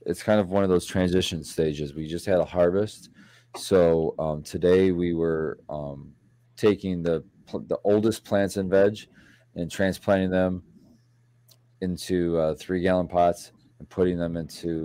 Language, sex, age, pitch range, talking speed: English, male, 20-39, 80-105 Hz, 155 wpm